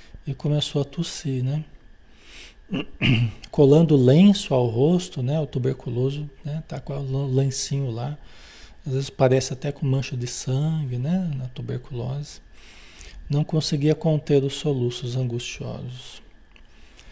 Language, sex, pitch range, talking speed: Portuguese, male, 130-185 Hz, 125 wpm